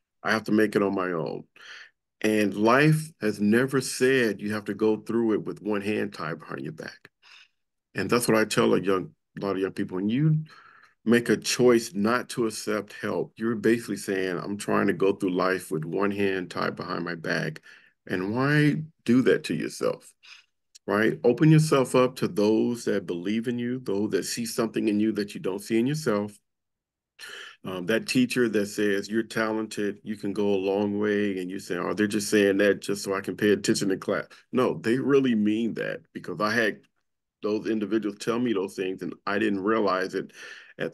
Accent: American